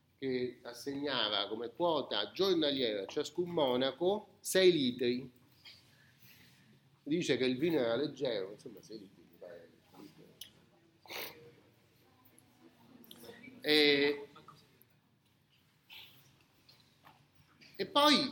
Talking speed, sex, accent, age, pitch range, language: 70 wpm, male, native, 30-49, 140-225 Hz, Italian